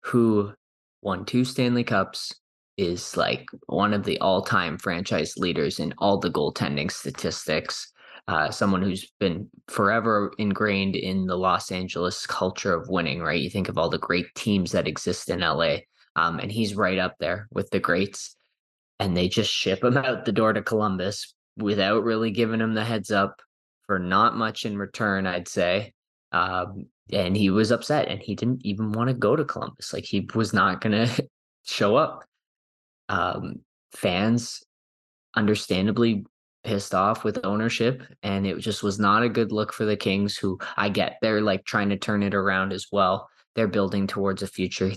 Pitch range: 95-115 Hz